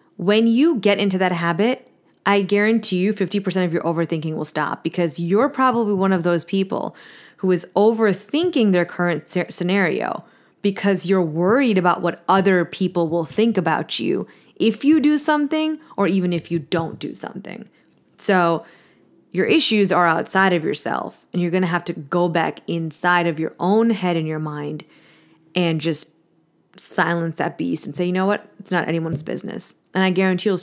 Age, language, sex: 20-39, English, female